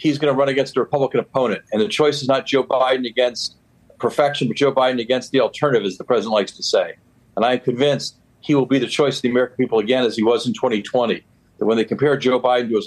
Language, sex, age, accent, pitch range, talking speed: English, male, 50-69, American, 125-145 Hz, 255 wpm